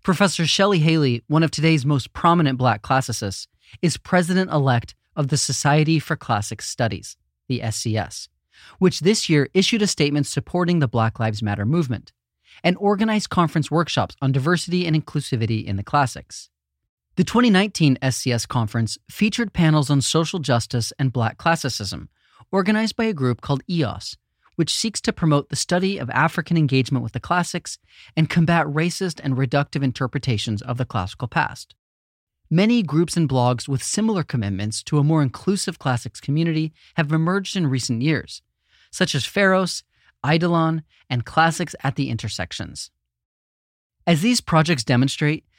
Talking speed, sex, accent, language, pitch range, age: 150 wpm, male, American, English, 120-170 Hz, 30-49